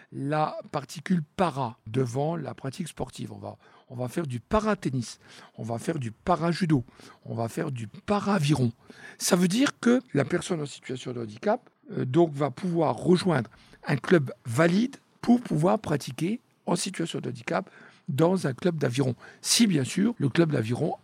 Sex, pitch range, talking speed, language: male, 125-185 Hz, 170 wpm, French